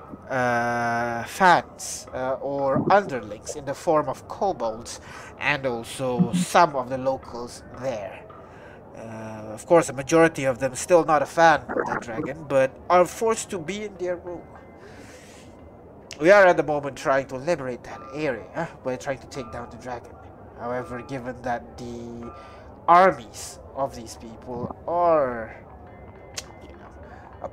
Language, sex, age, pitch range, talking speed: English, male, 30-49, 115-160 Hz, 145 wpm